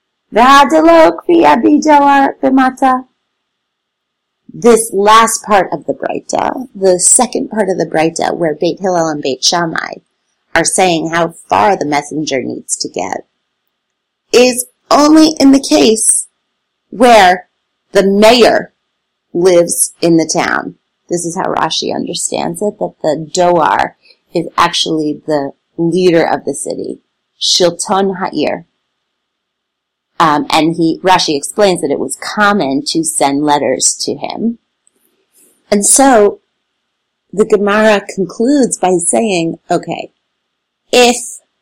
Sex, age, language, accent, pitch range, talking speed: female, 30-49, English, American, 170-230 Hz, 115 wpm